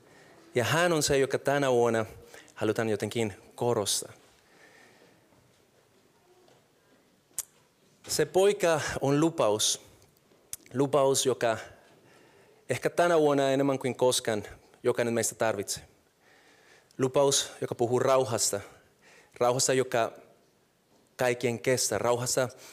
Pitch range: 115-145 Hz